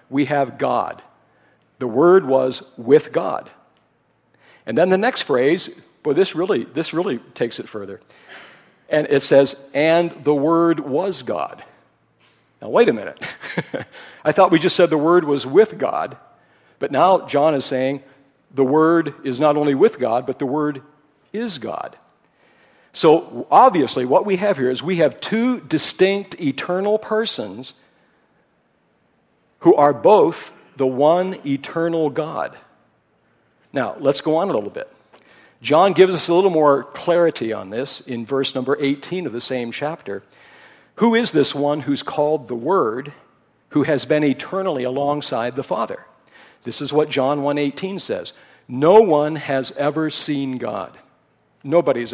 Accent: American